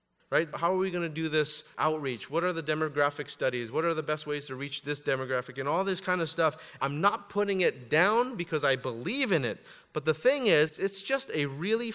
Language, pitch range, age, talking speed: English, 125-175 Hz, 30-49, 235 wpm